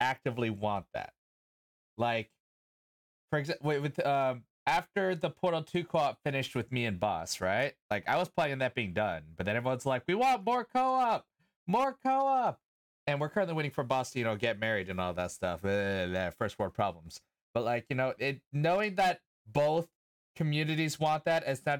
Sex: male